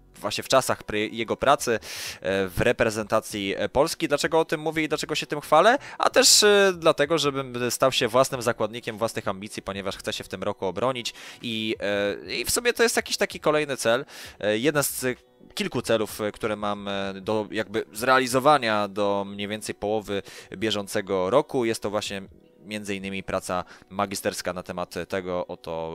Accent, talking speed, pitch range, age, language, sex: native, 160 wpm, 100-130 Hz, 20-39, Polish, male